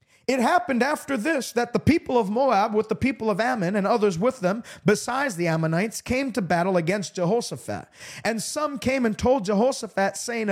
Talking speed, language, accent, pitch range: 190 wpm, English, American, 205-275 Hz